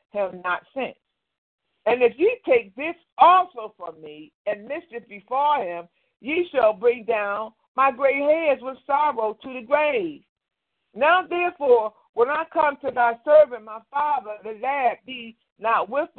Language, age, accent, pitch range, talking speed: English, 50-69, American, 210-285 Hz, 155 wpm